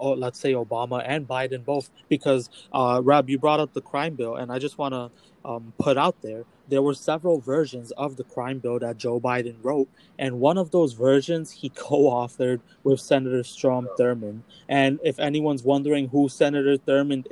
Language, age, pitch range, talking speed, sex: English, 20-39, 125-150 Hz, 195 wpm, male